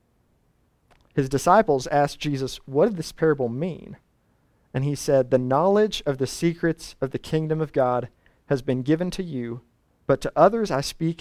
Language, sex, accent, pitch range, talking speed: English, male, American, 130-165 Hz, 170 wpm